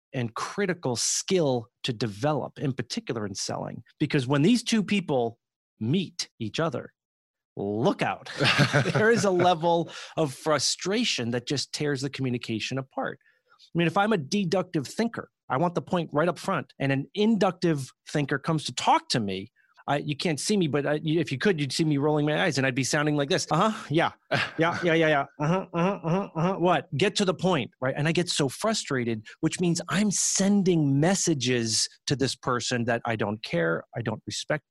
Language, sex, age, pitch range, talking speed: English, male, 30-49, 135-185 Hz, 190 wpm